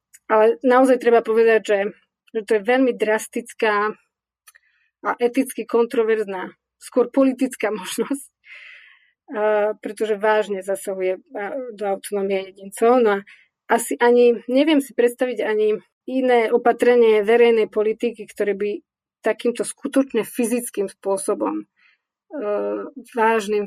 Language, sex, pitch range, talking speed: Slovak, female, 210-240 Hz, 105 wpm